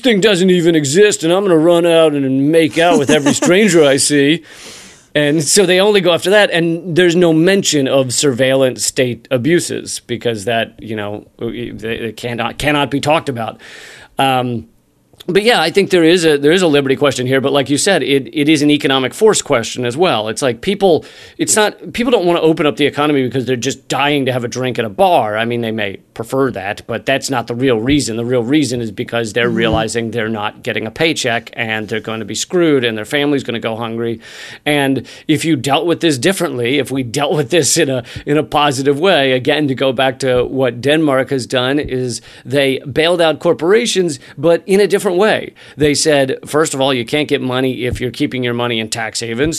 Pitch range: 120-160 Hz